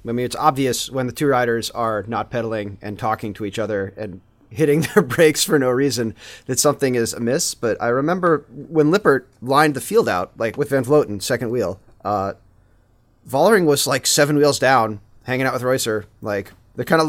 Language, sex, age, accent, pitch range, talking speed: English, male, 30-49, American, 110-140 Hz, 200 wpm